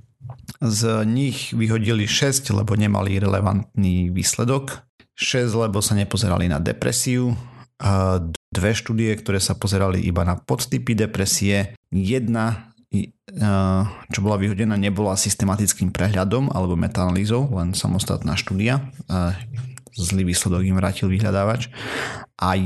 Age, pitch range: 40-59, 95-120 Hz